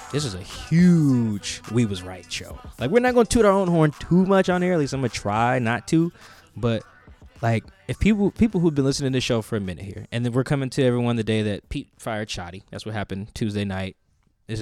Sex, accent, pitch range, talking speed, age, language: male, American, 100-135 Hz, 260 wpm, 20-39, English